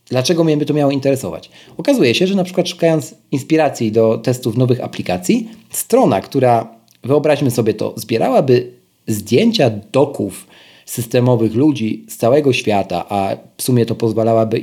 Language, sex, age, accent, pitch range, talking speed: Polish, male, 40-59, native, 110-140 Hz, 145 wpm